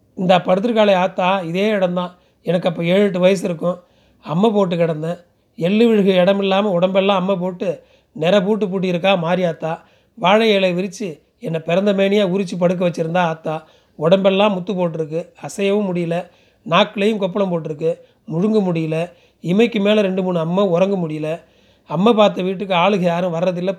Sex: male